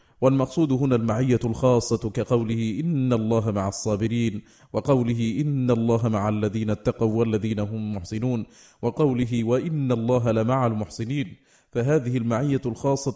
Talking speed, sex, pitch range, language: 120 wpm, male, 115-135 Hz, Arabic